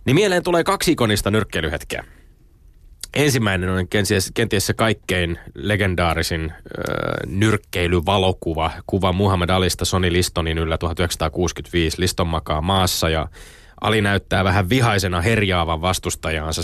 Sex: male